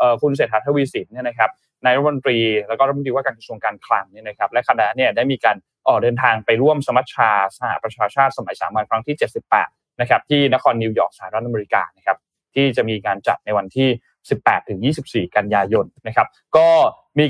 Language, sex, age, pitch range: Thai, male, 20-39, 115-150 Hz